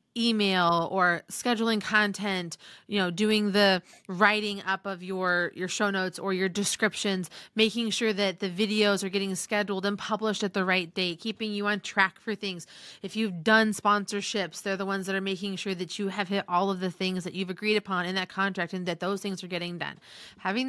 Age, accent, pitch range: 30-49, American, 175-210 Hz